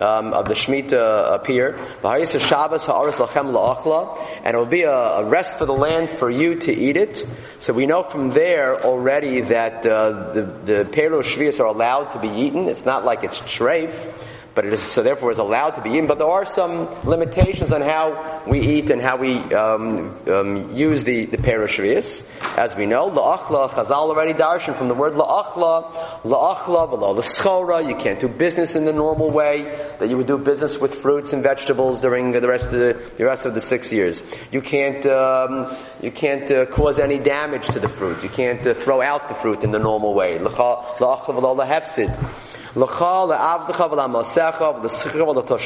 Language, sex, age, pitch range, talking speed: English, male, 30-49, 125-160 Hz, 185 wpm